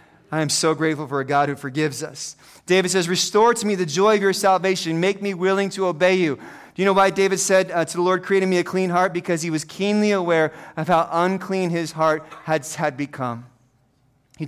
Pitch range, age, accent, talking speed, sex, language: 140-175 Hz, 30-49, American, 230 wpm, male, English